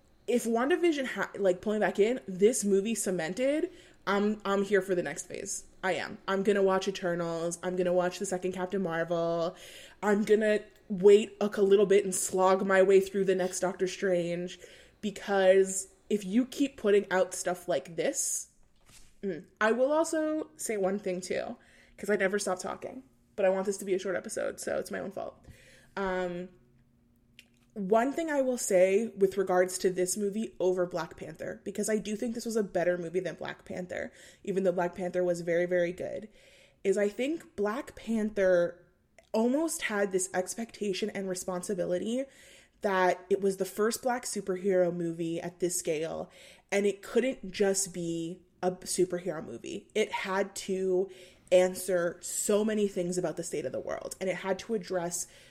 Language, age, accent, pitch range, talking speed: English, 20-39, American, 180-210 Hz, 180 wpm